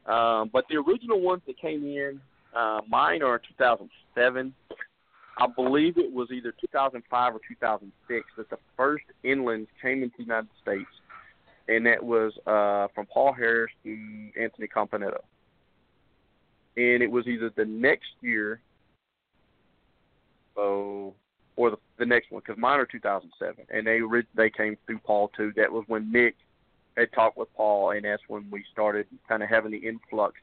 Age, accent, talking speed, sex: 40-59, American, 160 wpm, male